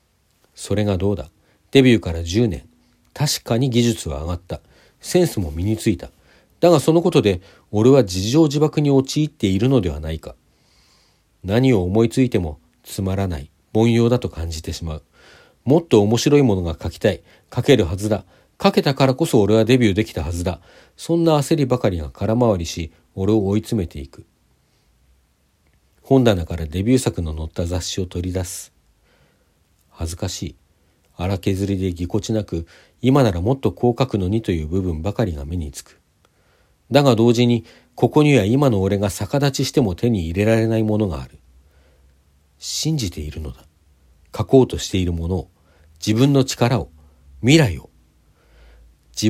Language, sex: Japanese, male